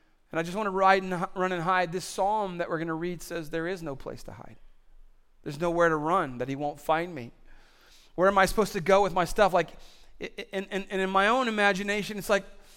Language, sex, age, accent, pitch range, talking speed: English, male, 40-59, American, 145-200 Hz, 245 wpm